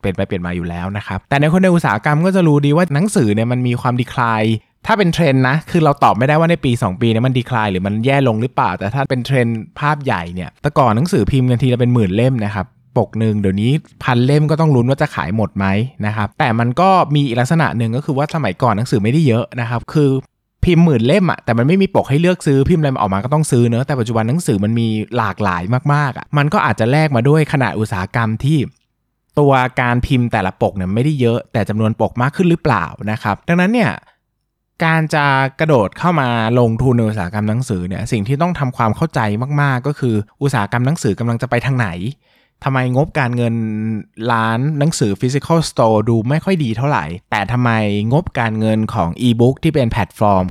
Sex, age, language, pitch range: male, 20-39, Thai, 110-145 Hz